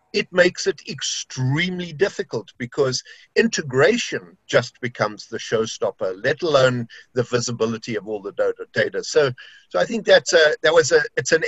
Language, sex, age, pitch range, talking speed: English, male, 50-69, 120-180 Hz, 155 wpm